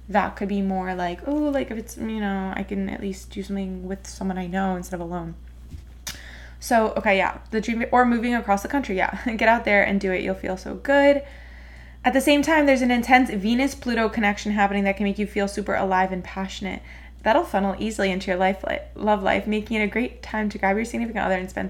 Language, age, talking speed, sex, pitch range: English, 20-39, 240 wpm, female, 195-255 Hz